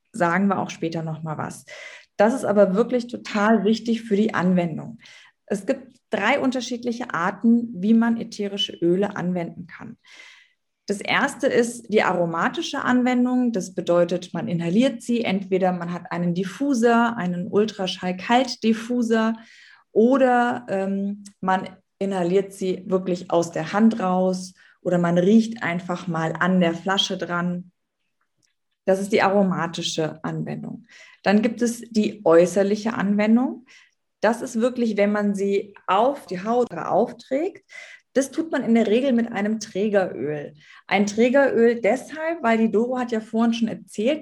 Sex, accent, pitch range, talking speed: female, German, 185-240 Hz, 145 wpm